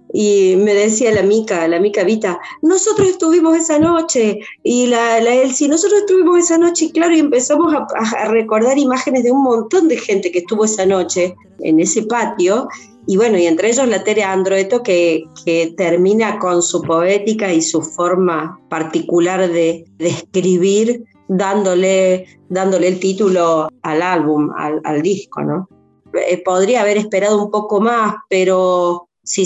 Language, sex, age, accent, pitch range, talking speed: Spanish, female, 20-39, Argentinian, 175-220 Hz, 160 wpm